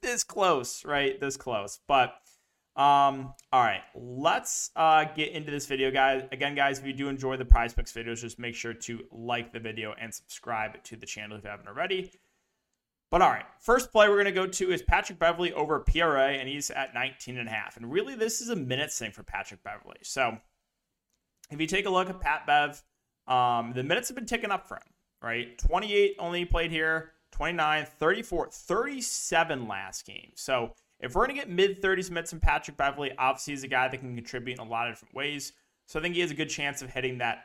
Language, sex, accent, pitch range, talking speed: English, male, American, 120-170 Hz, 220 wpm